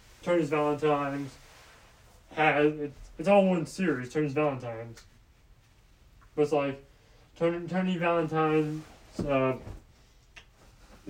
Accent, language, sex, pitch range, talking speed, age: American, English, male, 120-155 Hz, 90 wpm, 20-39